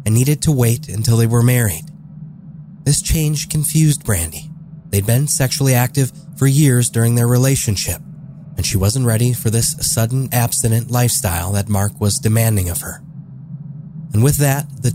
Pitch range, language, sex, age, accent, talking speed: 115-150 Hz, English, male, 30-49, American, 160 wpm